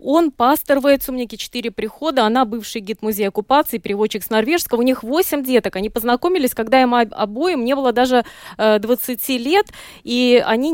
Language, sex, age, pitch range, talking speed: Russian, female, 20-39, 220-270 Hz, 175 wpm